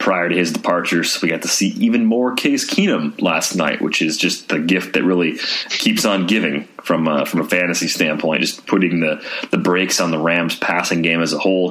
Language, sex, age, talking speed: English, male, 30-49, 220 wpm